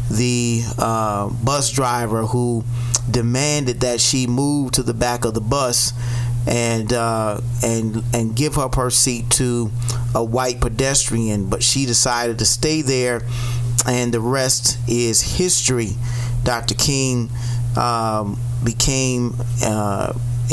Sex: male